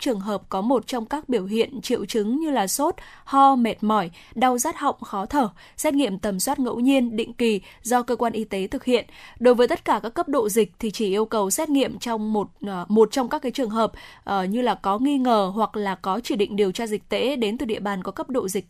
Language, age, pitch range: Vietnamese, 10-29, 210-265 Hz